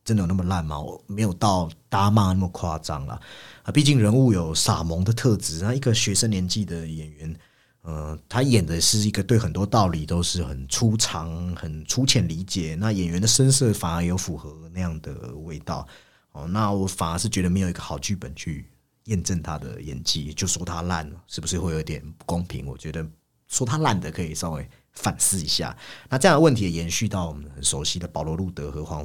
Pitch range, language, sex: 80-115 Hz, Chinese, male